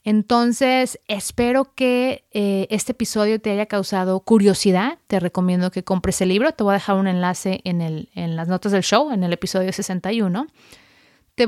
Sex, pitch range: female, 190-230 Hz